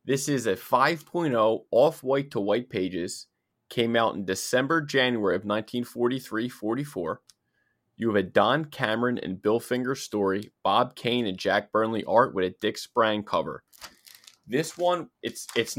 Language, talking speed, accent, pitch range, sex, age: English, 150 wpm, American, 100-130 Hz, male, 20-39